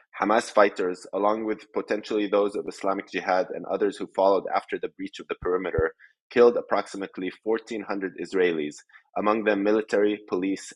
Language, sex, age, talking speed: English, male, 20-39, 150 wpm